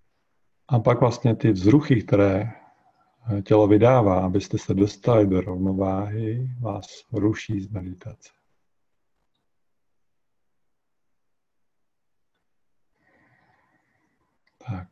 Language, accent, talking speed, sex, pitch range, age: Czech, native, 70 wpm, male, 95-120 Hz, 50-69